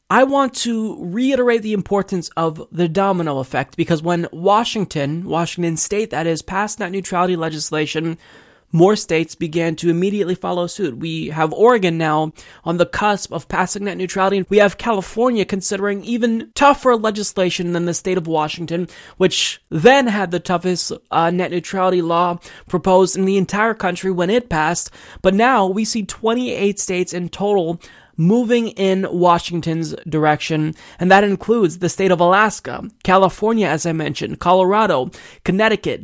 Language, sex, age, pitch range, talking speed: English, male, 20-39, 165-205 Hz, 155 wpm